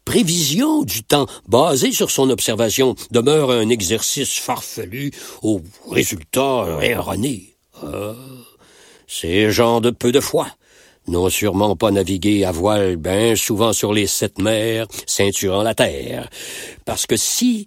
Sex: male